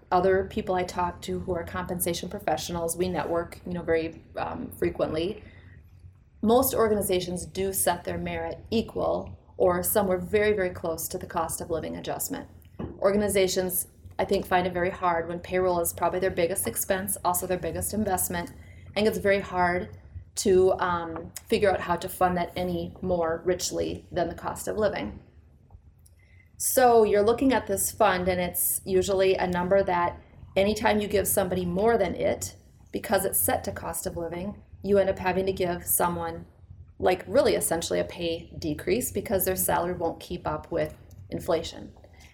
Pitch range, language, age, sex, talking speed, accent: 170-195 Hz, English, 30-49, female, 170 wpm, American